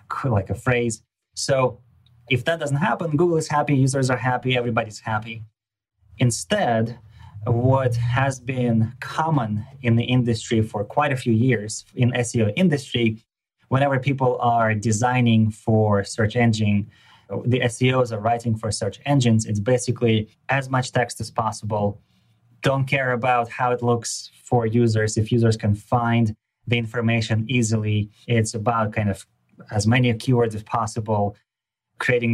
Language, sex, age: English, male, 20-39